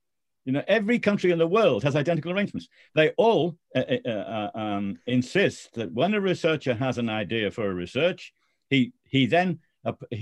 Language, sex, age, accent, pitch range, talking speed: English, male, 50-69, British, 120-175 Hz, 180 wpm